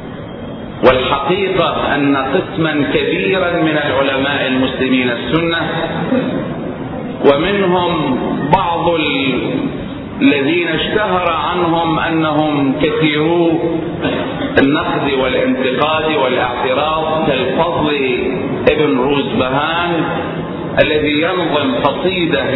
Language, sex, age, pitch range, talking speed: Arabic, male, 40-59, 145-170 Hz, 65 wpm